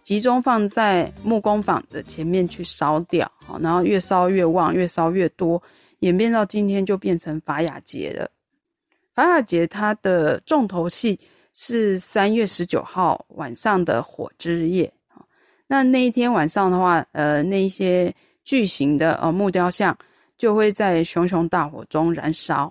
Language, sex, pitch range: Chinese, female, 170-220 Hz